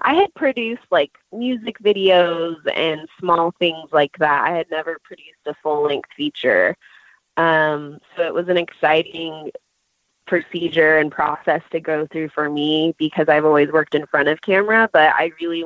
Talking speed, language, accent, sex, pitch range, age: 170 wpm, English, American, female, 150-175 Hz, 20-39